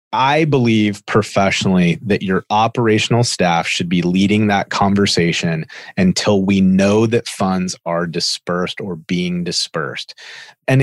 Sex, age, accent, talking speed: male, 30-49, American, 130 wpm